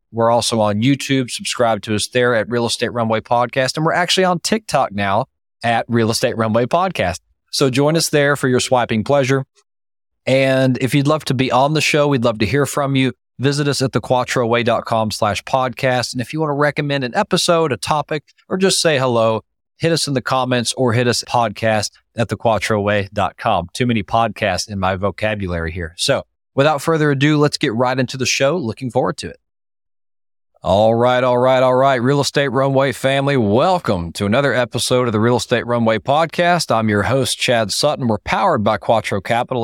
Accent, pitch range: American, 110-140 Hz